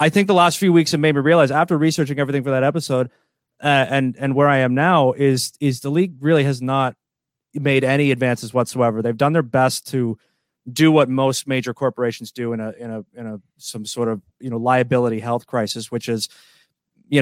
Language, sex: English, male